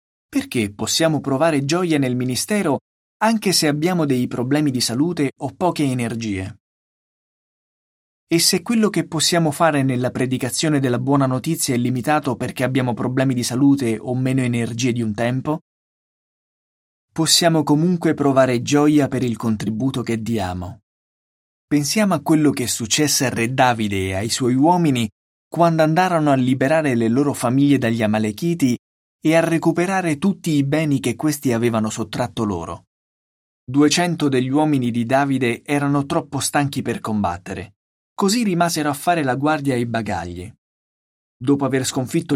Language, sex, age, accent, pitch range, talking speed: Italian, male, 20-39, native, 120-155 Hz, 145 wpm